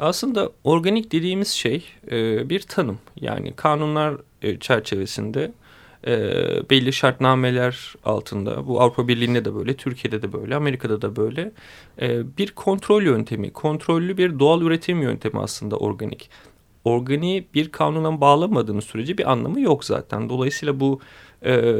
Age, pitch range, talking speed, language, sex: 40-59, 115-155 Hz, 135 wpm, Turkish, male